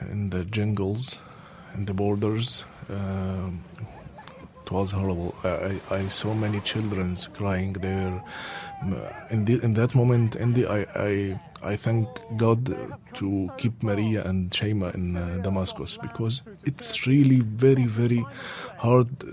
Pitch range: 100-125 Hz